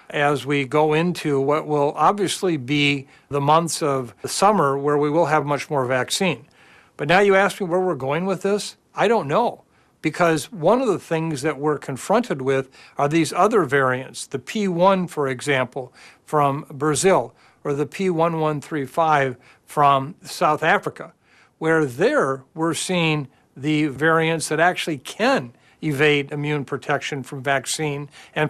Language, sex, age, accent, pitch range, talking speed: English, male, 50-69, American, 140-165 Hz, 155 wpm